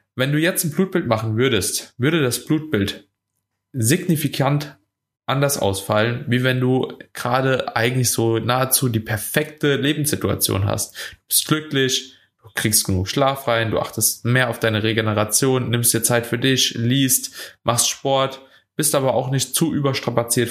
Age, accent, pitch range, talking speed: 20-39, German, 110-140 Hz, 150 wpm